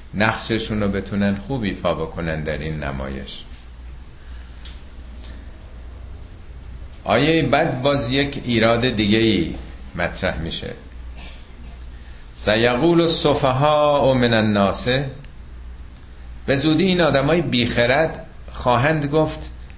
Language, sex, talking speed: Persian, male, 95 wpm